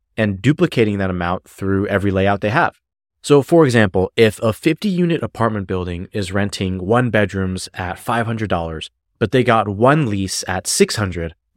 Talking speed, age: 155 wpm, 30-49